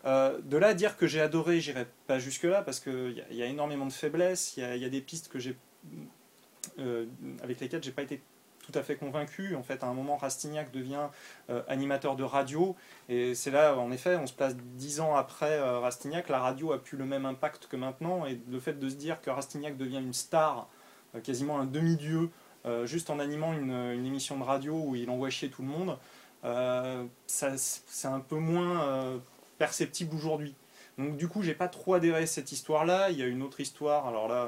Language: French